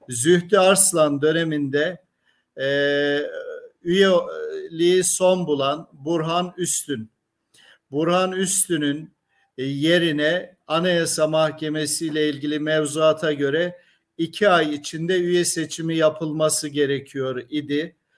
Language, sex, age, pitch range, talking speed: Turkish, male, 50-69, 155-180 Hz, 85 wpm